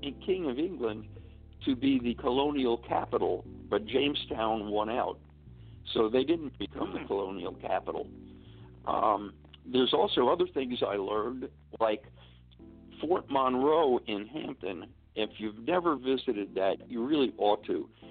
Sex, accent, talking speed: male, American, 135 wpm